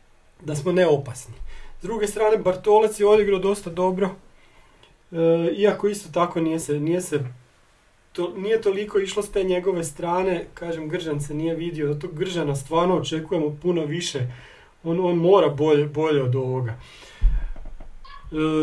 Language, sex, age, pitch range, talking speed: Croatian, male, 40-59, 145-180 Hz, 150 wpm